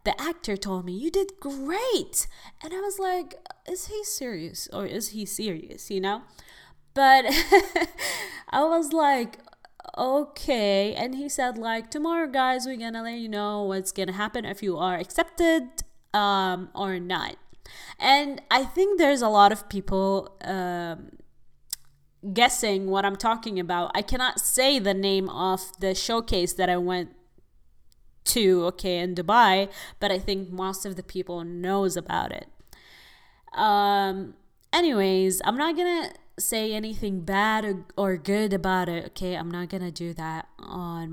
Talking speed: 155 wpm